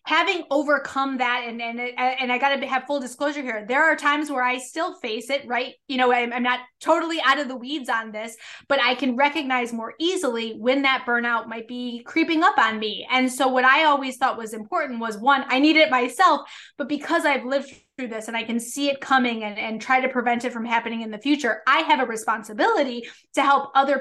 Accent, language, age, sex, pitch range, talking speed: American, English, 20-39, female, 230-280 Hz, 230 wpm